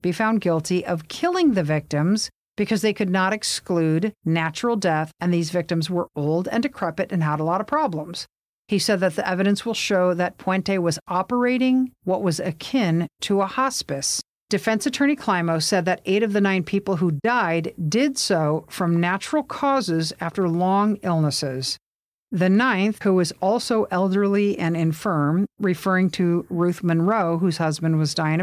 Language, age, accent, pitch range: English, 50-69, American, 165-215 Hz